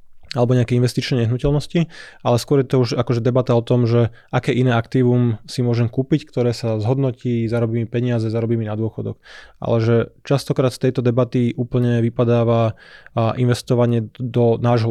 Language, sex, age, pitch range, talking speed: Slovak, male, 20-39, 115-125 Hz, 155 wpm